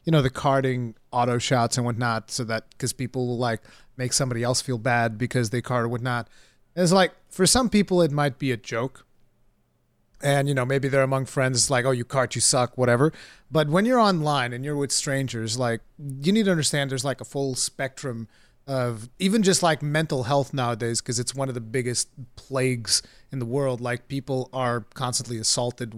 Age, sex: 30-49, male